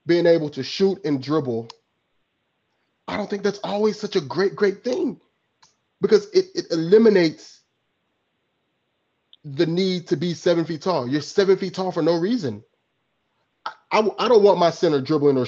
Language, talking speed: English, 165 wpm